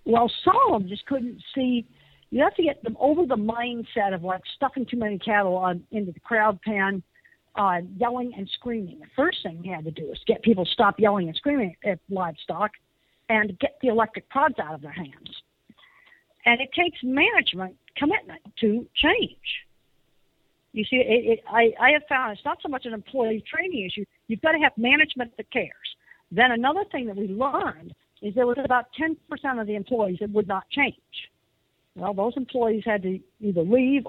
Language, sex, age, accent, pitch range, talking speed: English, female, 50-69, American, 200-260 Hz, 195 wpm